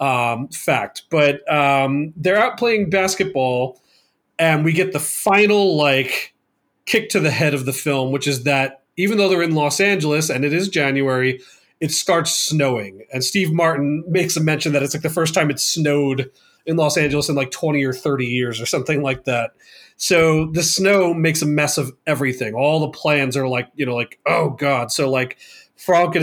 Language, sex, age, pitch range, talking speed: English, male, 30-49, 135-165 Hz, 195 wpm